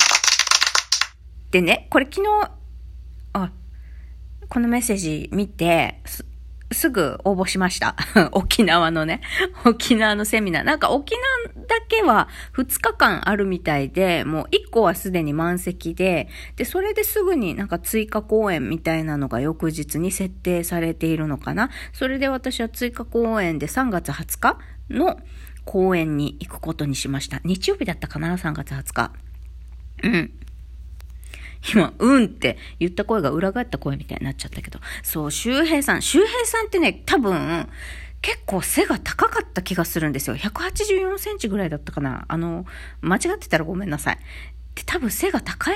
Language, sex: Japanese, female